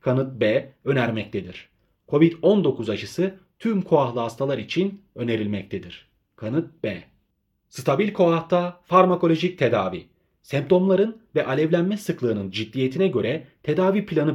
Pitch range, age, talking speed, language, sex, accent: 120-185 Hz, 30-49, 100 wpm, Turkish, male, native